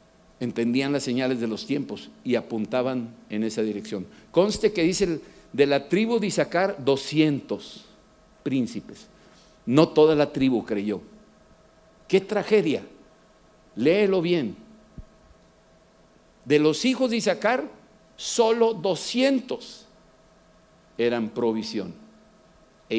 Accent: Mexican